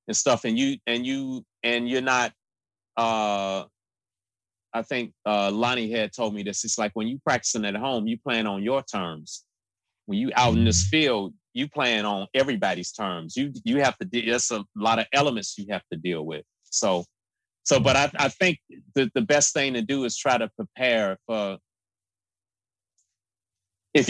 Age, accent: 30-49, American